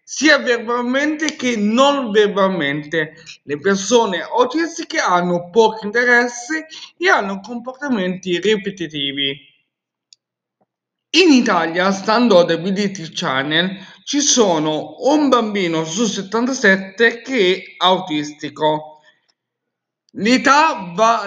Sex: male